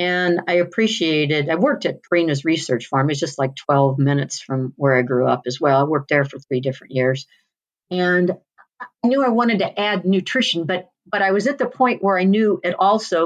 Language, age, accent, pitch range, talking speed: English, 50-69, American, 150-190 Hz, 215 wpm